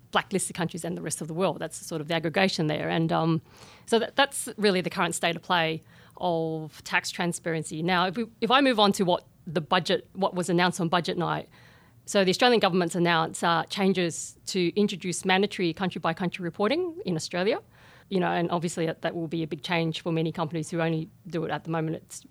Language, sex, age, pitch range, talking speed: English, female, 40-59, 165-190 Hz, 220 wpm